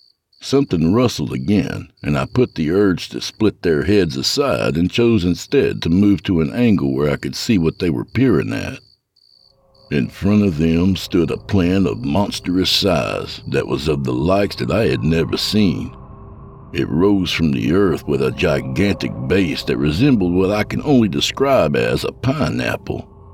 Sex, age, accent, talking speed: male, 60-79, American, 175 wpm